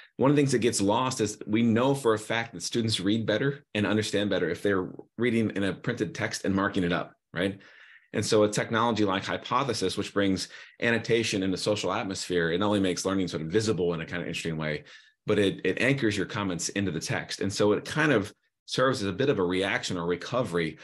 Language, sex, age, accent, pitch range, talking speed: English, male, 30-49, American, 90-110 Hz, 235 wpm